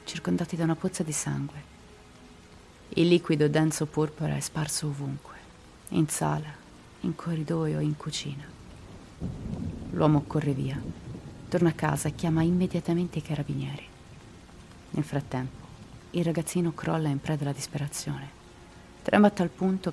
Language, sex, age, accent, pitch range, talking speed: Italian, female, 30-49, native, 145-175 Hz, 130 wpm